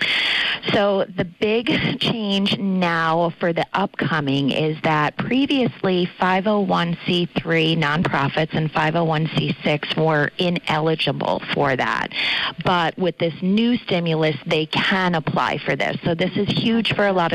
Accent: American